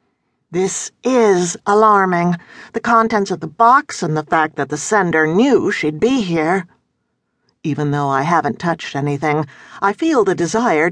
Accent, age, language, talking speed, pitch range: American, 50-69, English, 155 wpm, 170-230 Hz